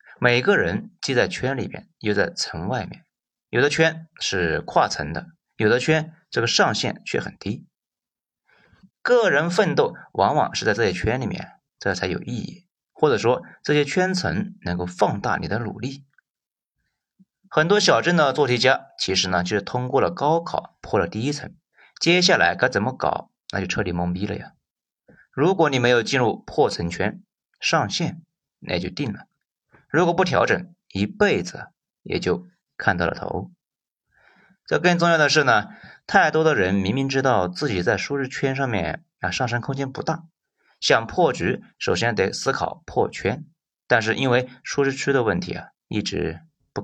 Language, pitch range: Chinese, 105-165 Hz